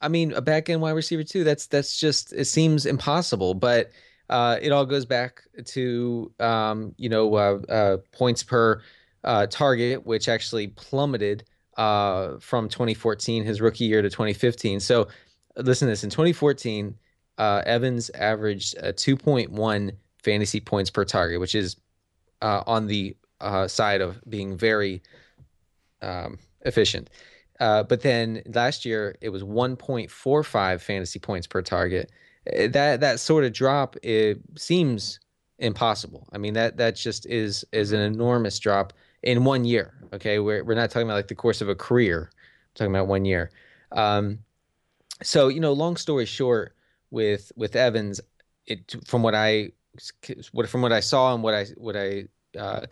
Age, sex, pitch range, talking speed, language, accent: 20-39, male, 100-125 Hz, 160 wpm, English, American